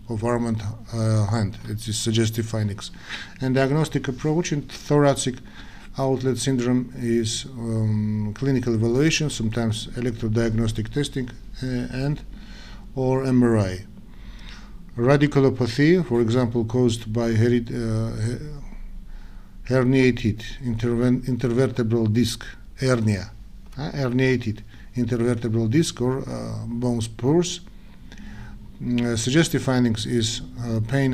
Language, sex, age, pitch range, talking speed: English, male, 50-69, 110-130 Hz, 100 wpm